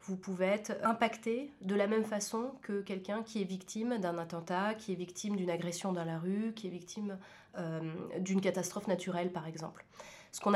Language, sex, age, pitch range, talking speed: French, female, 30-49, 190-230 Hz, 195 wpm